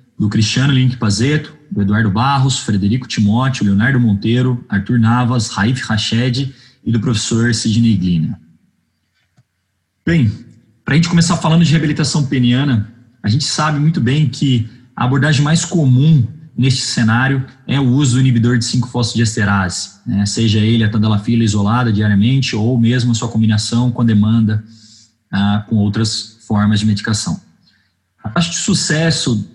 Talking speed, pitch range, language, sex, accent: 155 wpm, 110-130 Hz, Portuguese, male, Brazilian